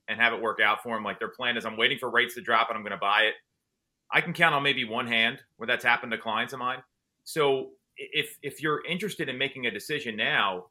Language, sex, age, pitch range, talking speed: English, male, 30-49, 125-170 Hz, 265 wpm